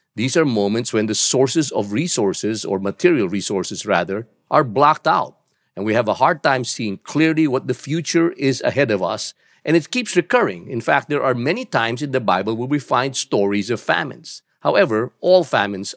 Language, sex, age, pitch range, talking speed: English, male, 50-69, 110-160 Hz, 195 wpm